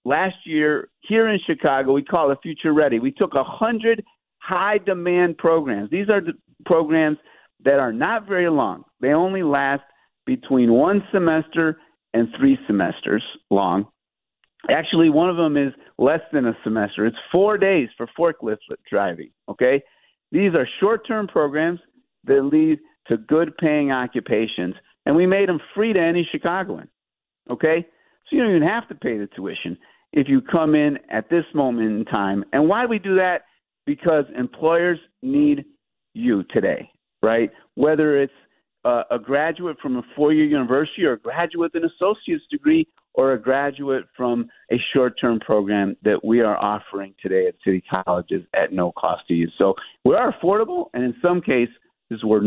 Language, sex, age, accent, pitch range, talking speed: English, male, 50-69, American, 125-195 Hz, 160 wpm